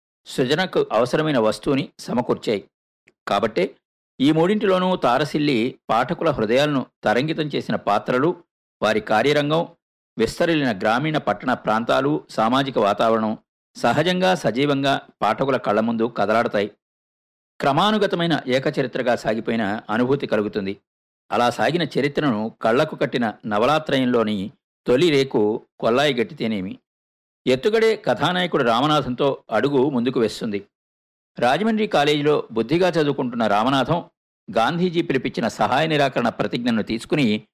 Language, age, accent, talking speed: Telugu, 50-69, native, 95 wpm